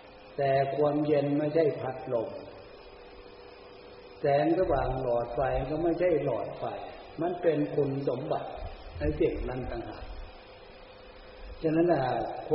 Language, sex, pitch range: Thai, male, 120-150 Hz